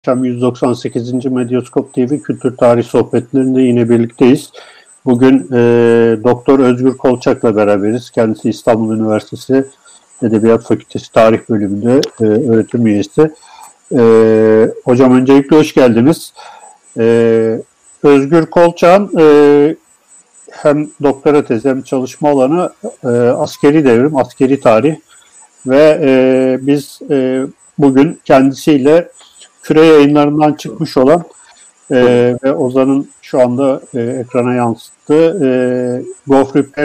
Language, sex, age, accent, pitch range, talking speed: Turkish, male, 50-69, native, 125-150 Hz, 105 wpm